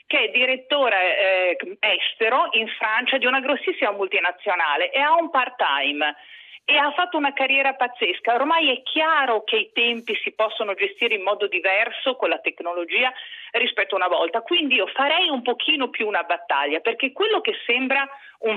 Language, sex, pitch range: Italian, female, 215-330 Hz